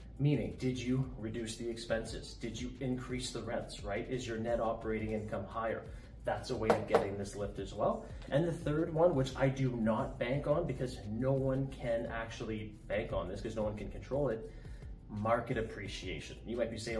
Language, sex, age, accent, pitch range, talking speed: English, male, 30-49, American, 110-135 Hz, 200 wpm